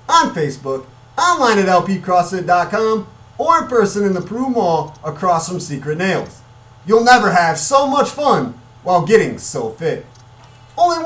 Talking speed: 145 wpm